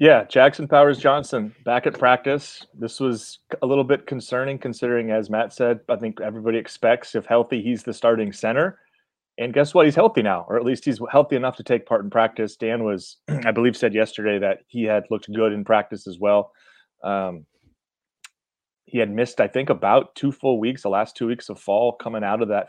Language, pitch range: English, 105-125 Hz